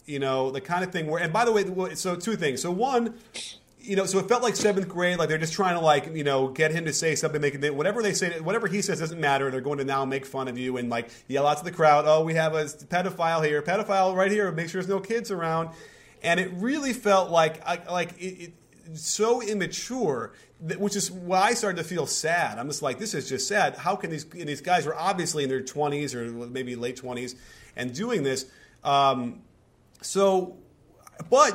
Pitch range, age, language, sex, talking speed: 150-200 Hz, 30-49, English, male, 235 wpm